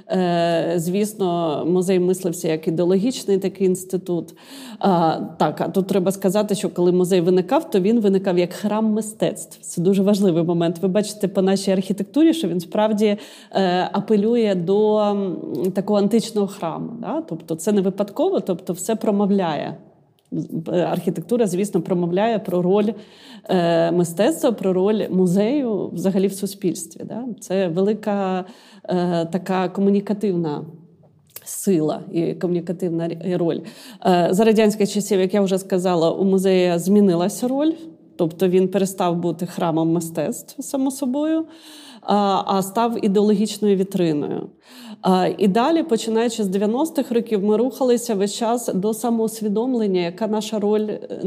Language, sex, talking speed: Ukrainian, female, 125 wpm